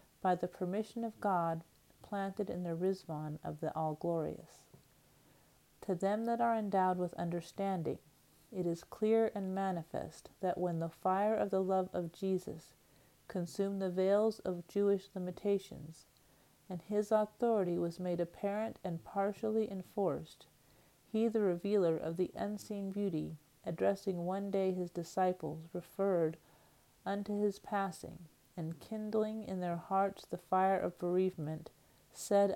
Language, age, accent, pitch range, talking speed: English, 40-59, American, 170-200 Hz, 135 wpm